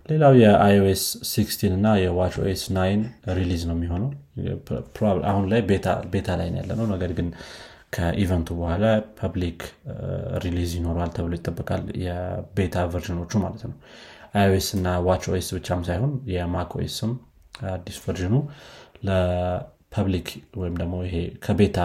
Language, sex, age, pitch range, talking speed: Amharic, male, 30-49, 85-105 Hz, 95 wpm